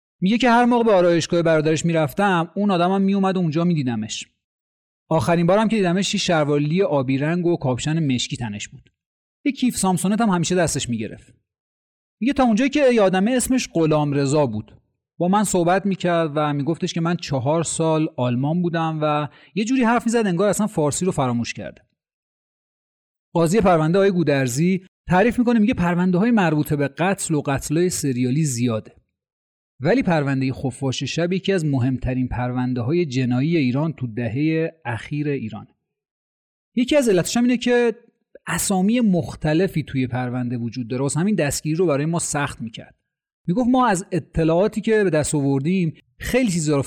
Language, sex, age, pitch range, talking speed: Persian, male, 30-49, 130-185 Hz, 155 wpm